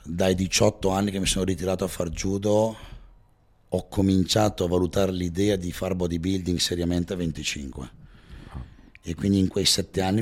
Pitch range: 85-100 Hz